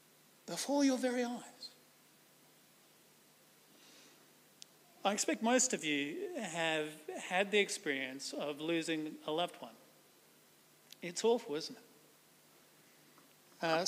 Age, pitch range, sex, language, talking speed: 40-59, 180-255 Hz, male, English, 100 wpm